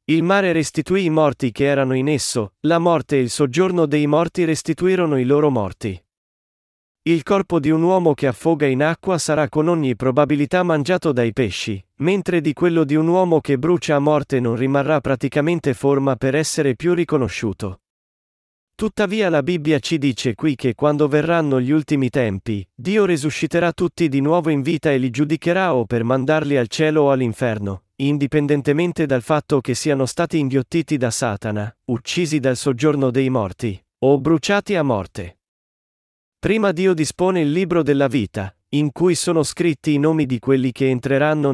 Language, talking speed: Italian, 170 wpm